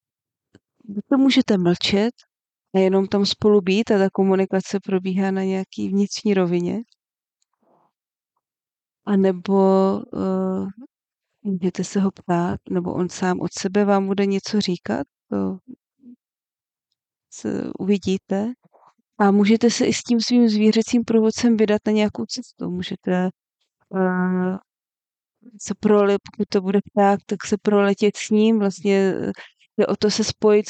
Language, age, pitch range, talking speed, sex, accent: Czech, 30-49, 185-210 Hz, 130 wpm, female, native